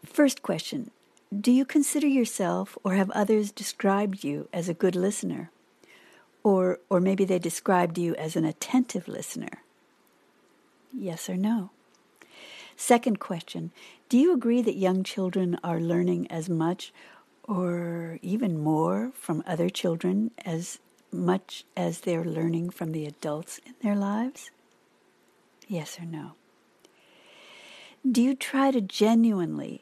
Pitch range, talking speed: 170-220 Hz, 130 wpm